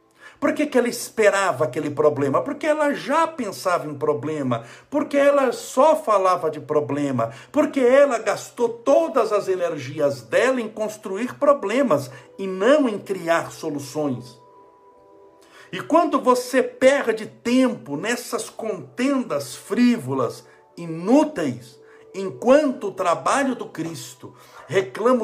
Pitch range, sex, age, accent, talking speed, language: 165-250 Hz, male, 60-79, Brazilian, 115 wpm, Portuguese